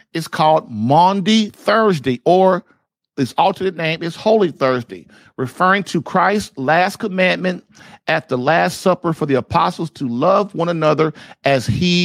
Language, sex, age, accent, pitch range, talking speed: English, male, 50-69, American, 140-190 Hz, 145 wpm